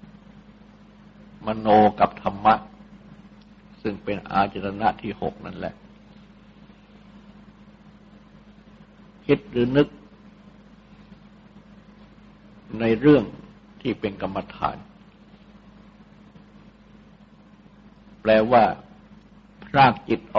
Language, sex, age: Thai, male, 60-79